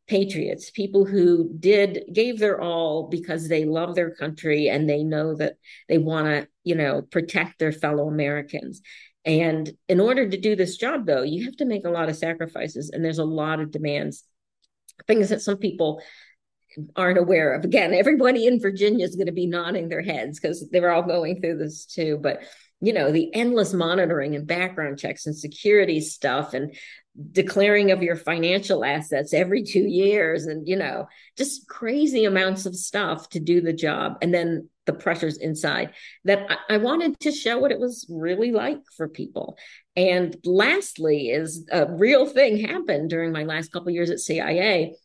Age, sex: 50-69, female